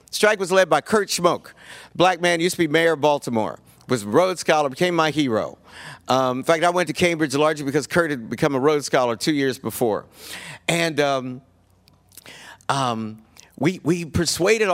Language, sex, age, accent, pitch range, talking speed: English, male, 50-69, American, 135-180 Hz, 185 wpm